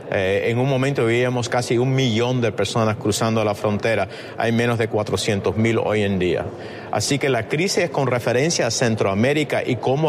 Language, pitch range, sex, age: Spanish, 115-140 Hz, male, 50-69